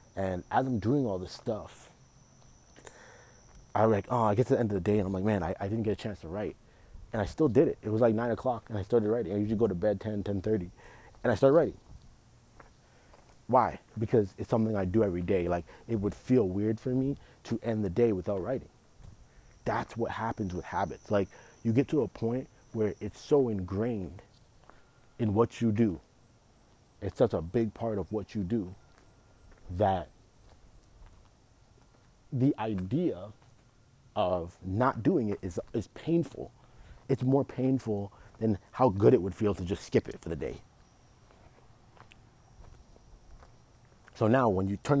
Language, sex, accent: English, male, American